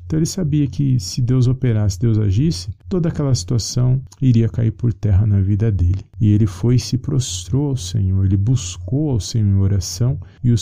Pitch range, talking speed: 105-125 Hz, 200 wpm